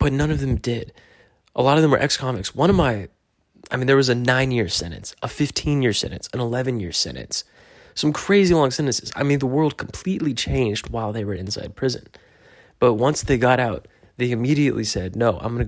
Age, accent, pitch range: 20-39, American, 105-125 Hz